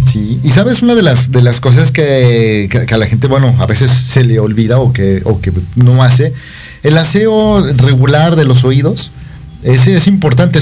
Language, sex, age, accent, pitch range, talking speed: Spanish, male, 40-59, Mexican, 120-150 Hz, 200 wpm